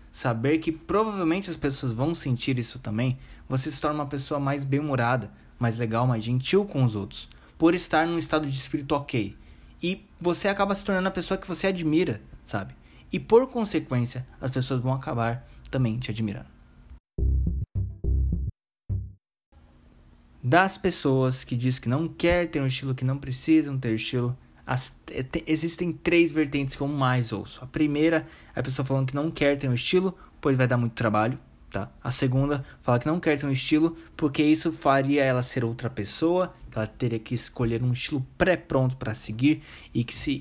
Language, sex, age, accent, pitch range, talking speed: Portuguese, male, 20-39, Brazilian, 115-155 Hz, 180 wpm